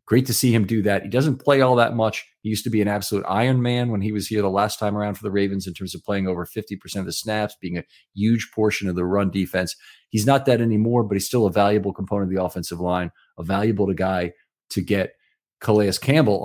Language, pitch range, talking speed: English, 95-125 Hz, 250 wpm